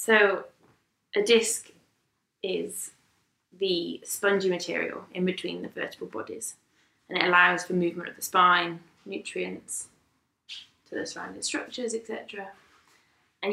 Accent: British